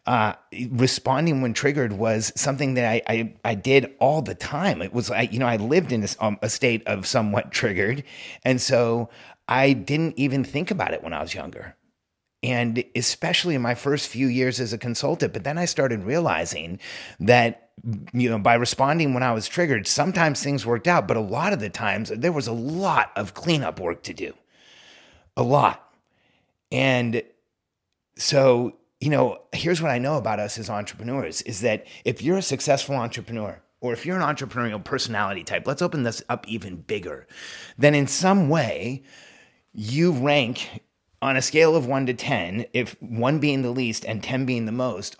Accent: American